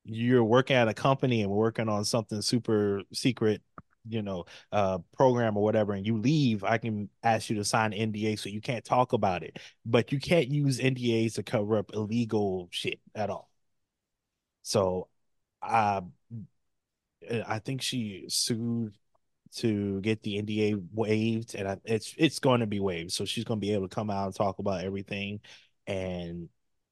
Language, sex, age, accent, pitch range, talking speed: English, male, 20-39, American, 100-125 Hz, 170 wpm